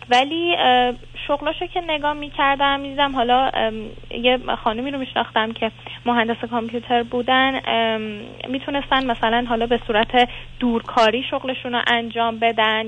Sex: female